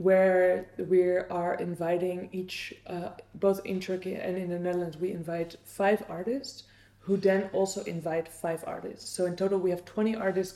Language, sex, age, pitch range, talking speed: Dutch, female, 20-39, 175-200 Hz, 170 wpm